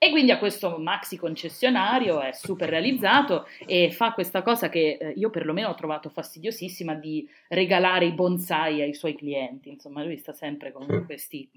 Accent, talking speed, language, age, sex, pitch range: native, 165 wpm, Italian, 30-49, female, 150-185 Hz